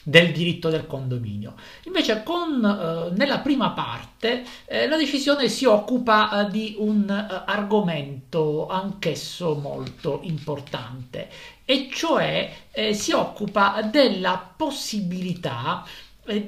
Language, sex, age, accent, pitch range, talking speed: Italian, male, 50-69, native, 155-220 Hz, 110 wpm